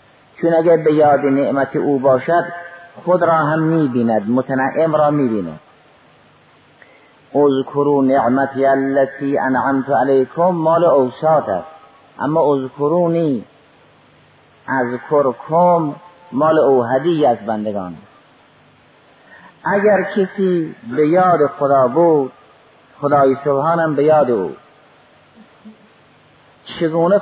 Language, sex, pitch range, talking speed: Persian, male, 135-165 Hz, 95 wpm